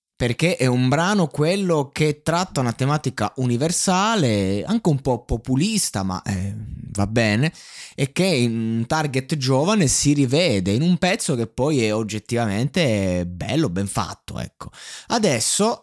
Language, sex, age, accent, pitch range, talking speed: Italian, male, 20-39, native, 100-140 Hz, 140 wpm